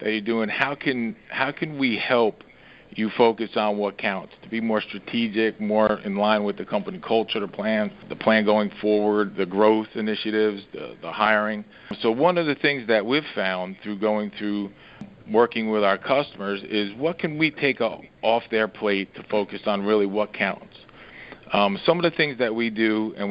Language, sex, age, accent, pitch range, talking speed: English, male, 50-69, American, 105-120 Hz, 195 wpm